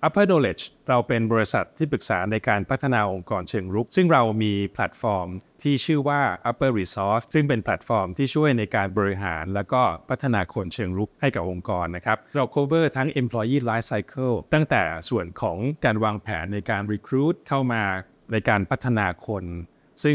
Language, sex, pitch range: Thai, male, 105-135 Hz